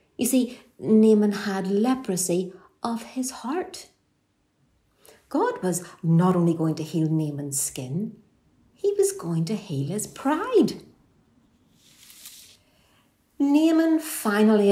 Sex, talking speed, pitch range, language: female, 105 wpm, 160-235 Hz, English